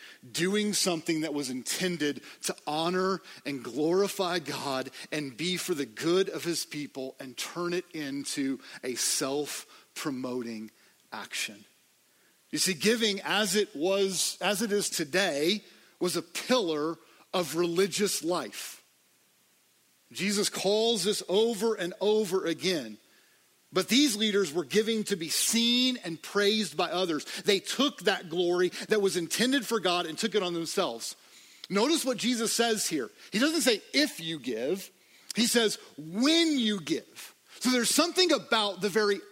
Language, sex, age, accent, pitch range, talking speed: English, male, 40-59, American, 170-235 Hz, 145 wpm